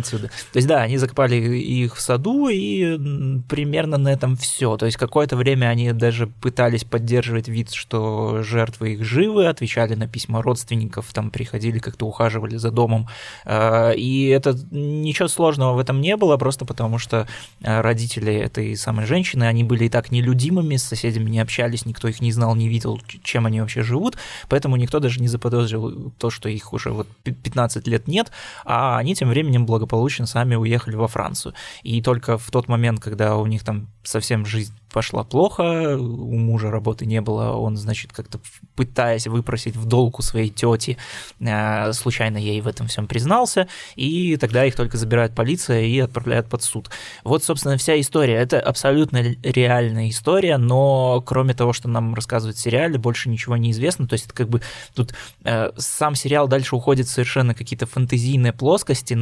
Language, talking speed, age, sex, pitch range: Russian, 175 wpm, 20-39, male, 115-130 Hz